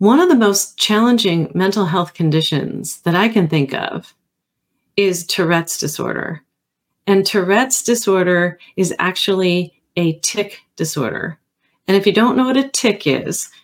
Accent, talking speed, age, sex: American, 145 wpm, 40-59, female